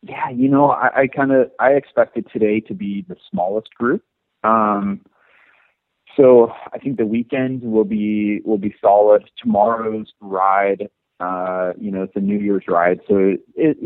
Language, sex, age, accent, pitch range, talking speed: English, male, 30-49, American, 95-110 Hz, 170 wpm